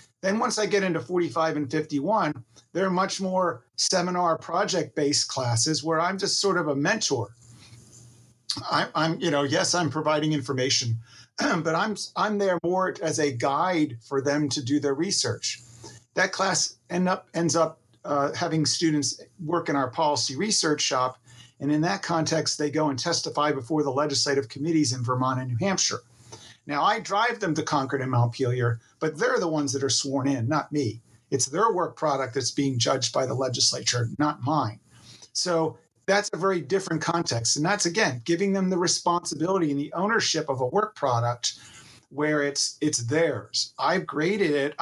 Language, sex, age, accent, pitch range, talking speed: English, male, 50-69, American, 130-170 Hz, 175 wpm